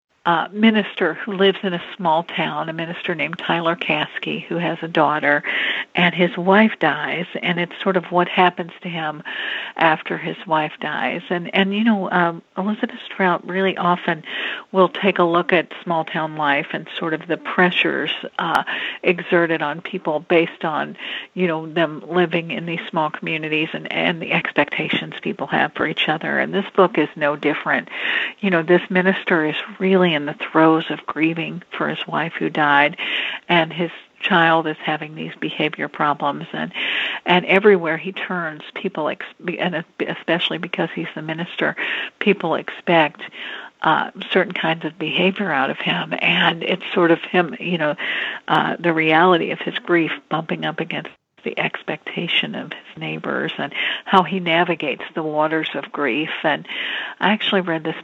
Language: English